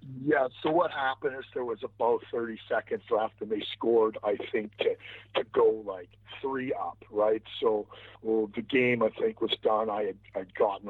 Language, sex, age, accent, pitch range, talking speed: English, male, 40-59, American, 105-175 Hz, 195 wpm